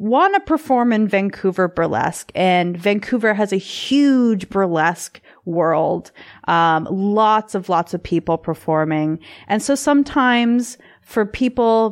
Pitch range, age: 175-220 Hz, 30-49